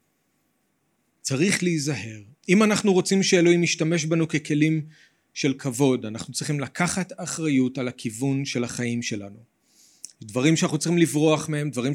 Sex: male